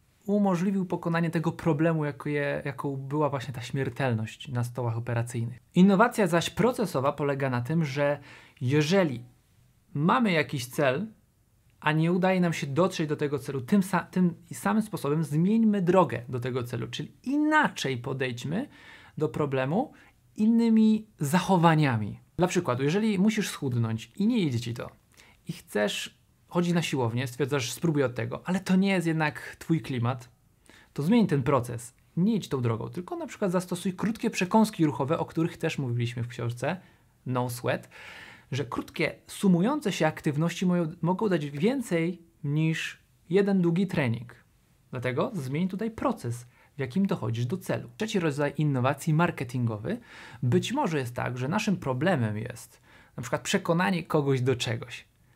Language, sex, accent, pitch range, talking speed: Polish, male, native, 125-185 Hz, 150 wpm